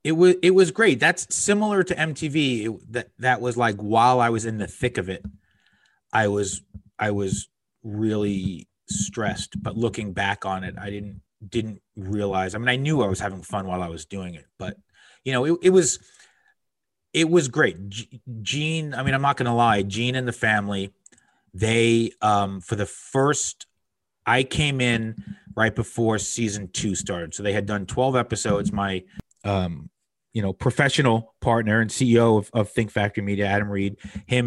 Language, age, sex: English, 30-49, male